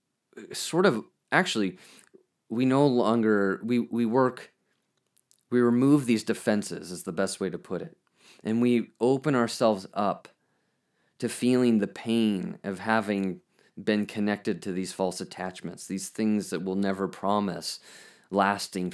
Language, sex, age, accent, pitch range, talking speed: English, male, 30-49, American, 95-115 Hz, 140 wpm